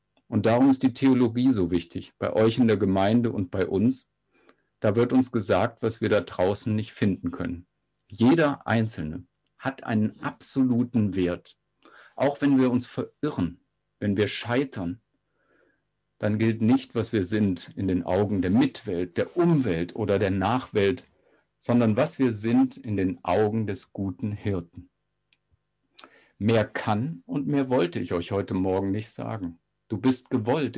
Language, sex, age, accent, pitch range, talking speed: German, male, 50-69, German, 95-130 Hz, 155 wpm